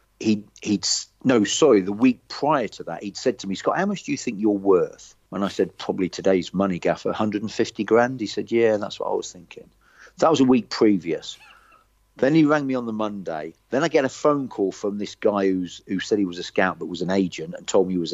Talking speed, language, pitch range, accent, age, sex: 250 wpm, English, 90-110 Hz, British, 40-59, male